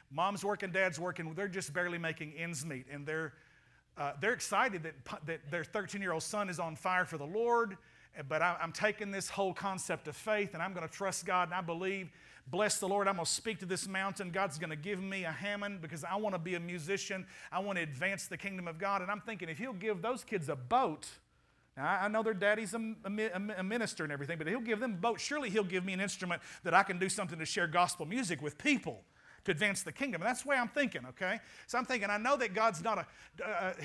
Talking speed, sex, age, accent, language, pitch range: 245 wpm, male, 50-69, American, English, 175-225 Hz